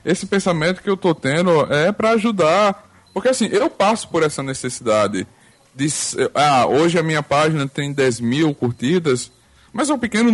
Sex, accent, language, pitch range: male, Brazilian, Portuguese, 130-180 Hz